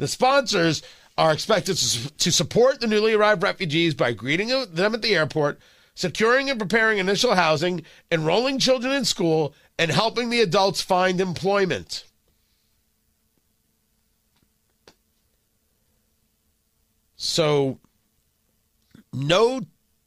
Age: 40-59